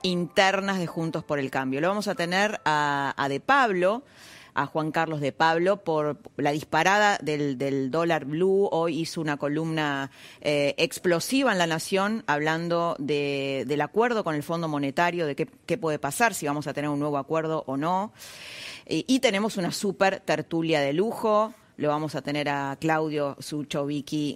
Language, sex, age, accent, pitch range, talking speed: Spanish, female, 30-49, Argentinian, 150-200 Hz, 175 wpm